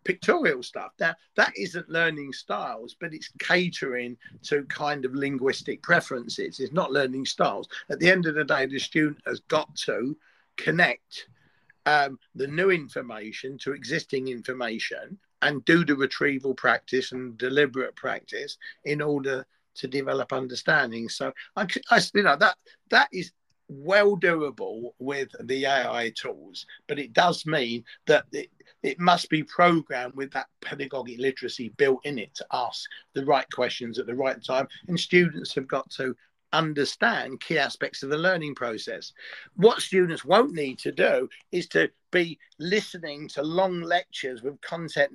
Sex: male